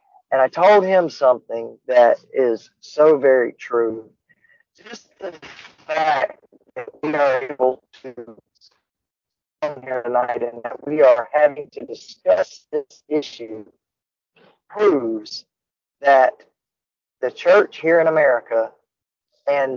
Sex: male